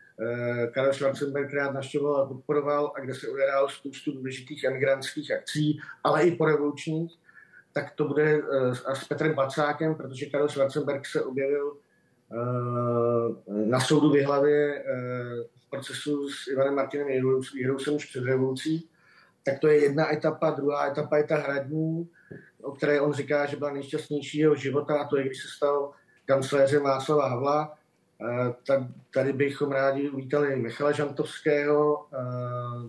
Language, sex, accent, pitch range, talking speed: Czech, male, native, 135-150 Hz, 135 wpm